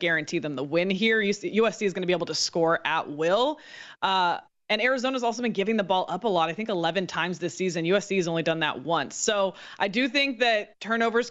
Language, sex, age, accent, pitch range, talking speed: English, female, 20-39, American, 180-225 Hz, 235 wpm